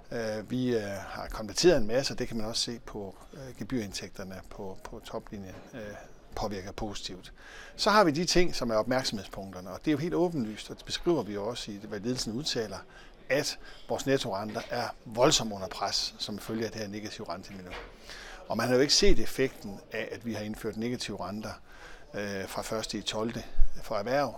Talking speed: 200 wpm